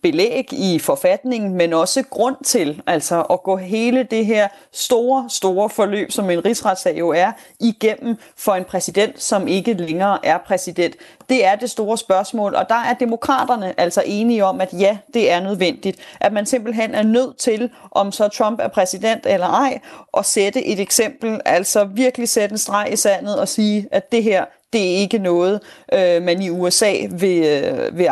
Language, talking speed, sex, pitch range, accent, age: Danish, 180 wpm, female, 185-235 Hz, native, 30-49